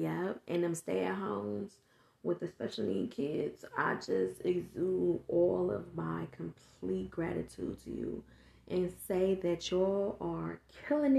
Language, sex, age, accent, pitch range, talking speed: English, female, 20-39, American, 145-215 Hz, 140 wpm